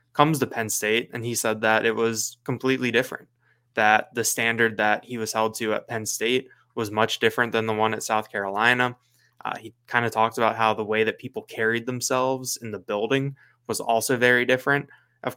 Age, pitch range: 20-39, 105-120 Hz